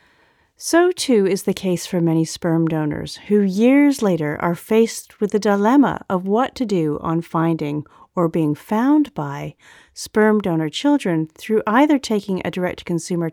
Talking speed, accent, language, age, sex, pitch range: 160 wpm, American, English, 40-59, female, 170-230 Hz